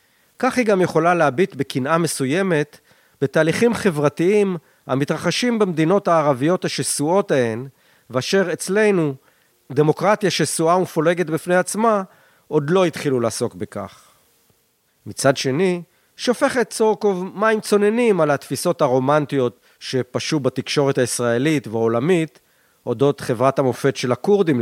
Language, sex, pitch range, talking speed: Hebrew, male, 130-180 Hz, 105 wpm